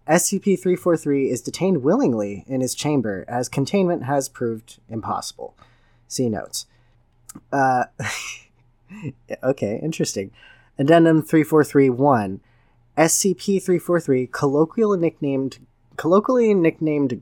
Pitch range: 120-165 Hz